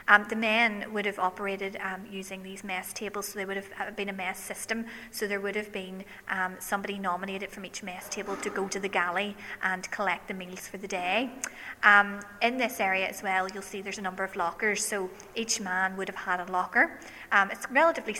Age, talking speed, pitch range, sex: 30-49, 225 wpm, 185-205 Hz, female